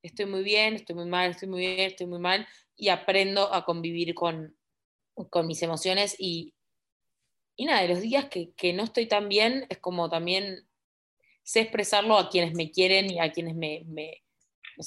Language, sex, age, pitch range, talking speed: Spanish, female, 20-39, 170-200 Hz, 190 wpm